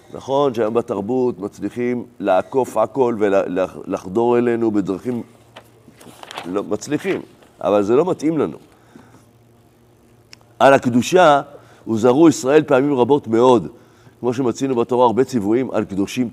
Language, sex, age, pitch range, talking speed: Hebrew, male, 50-69, 115-125 Hz, 115 wpm